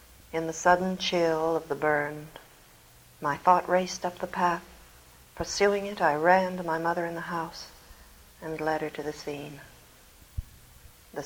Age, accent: 60-79, American